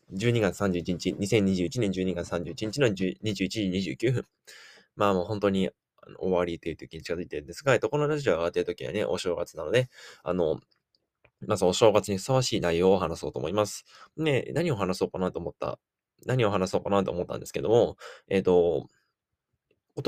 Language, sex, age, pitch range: Japanese, male, 20-39, 95-125 Hz